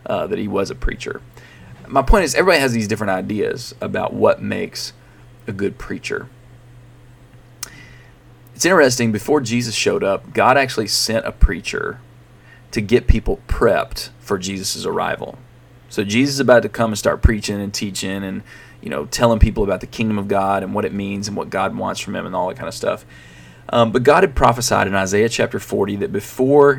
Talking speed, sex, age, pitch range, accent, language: 195 wpm, male, 30-49, 100-125 Hz, American, English